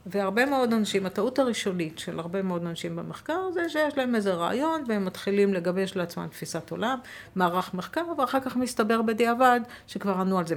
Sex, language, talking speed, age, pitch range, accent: female, Hebrew, 175 wpm, 50-69, 175-230 Hz, native